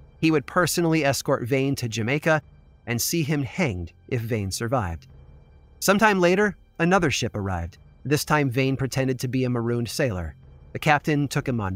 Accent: American